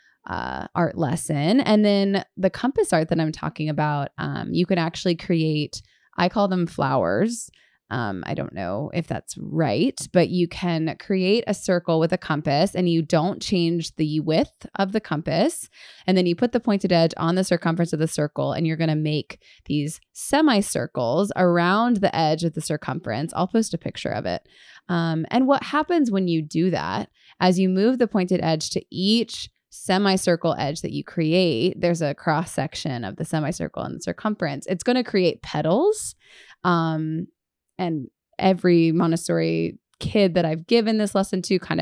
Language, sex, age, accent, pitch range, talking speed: English, female, 20-39, American, 160-195 Hz, 180 wpm